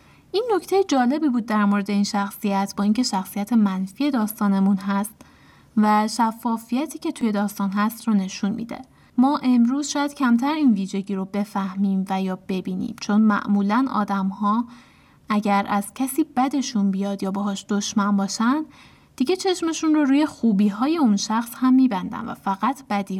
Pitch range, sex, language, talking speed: 200-260 Hz, female, Persian, 160 wpm